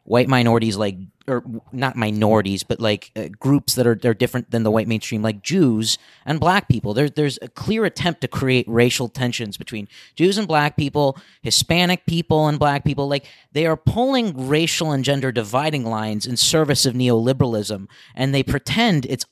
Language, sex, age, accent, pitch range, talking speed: English, male, 30-49, American, 120-155 Hz, 185 wpm